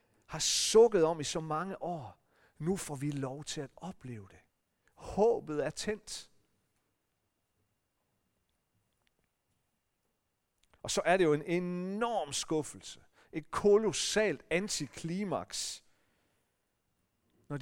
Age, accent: 40-59, native